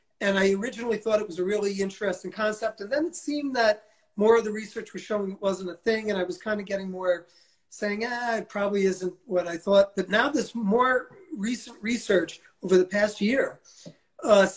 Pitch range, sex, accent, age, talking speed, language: 180-215 Hz, male, American, 40-59, 210 wpm, Portuguese